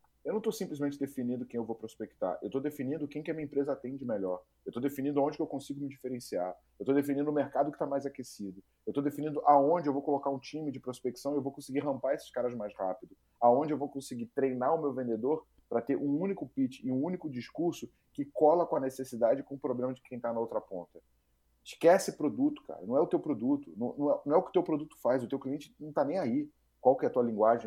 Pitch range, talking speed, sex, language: 120-155 Hz, 260 wpm, male, Portuguese